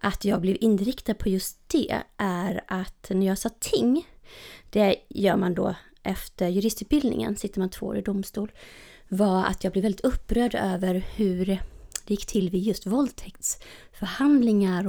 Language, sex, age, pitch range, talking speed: Swedish, female, 30-49, 190-225 Hz, 155 wpm